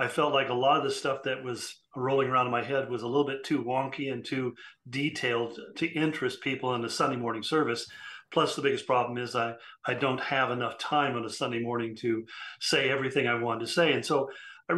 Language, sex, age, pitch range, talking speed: English, male, 40-59, 125-155 Hz, 230 wpm